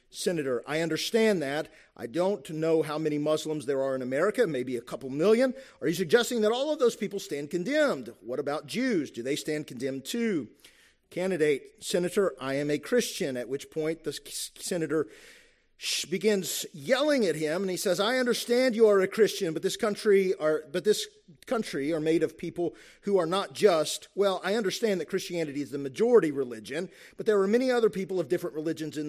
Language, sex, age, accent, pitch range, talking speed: English, male, 40-59, American, 145-215 Hz, 195 wpm